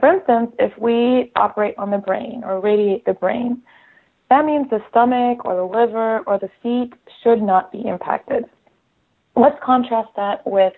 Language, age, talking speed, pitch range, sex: English, 30-49, 165 wpm, 190-245 Hz, female